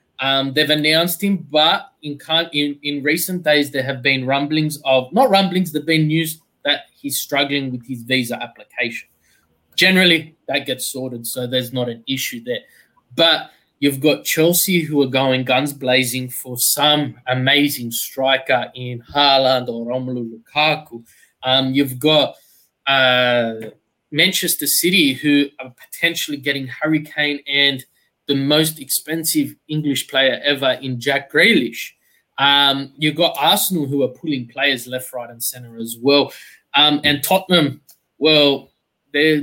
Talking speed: 145 wpm